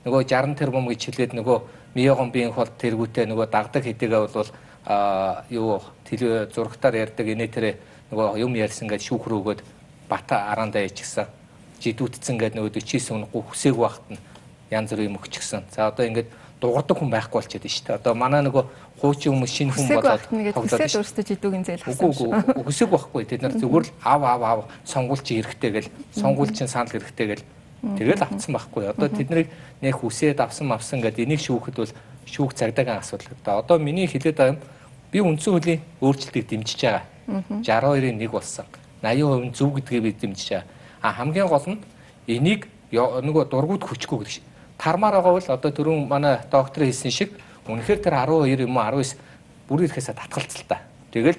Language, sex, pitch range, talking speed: English, male, 115-150 Hz, 95 wpm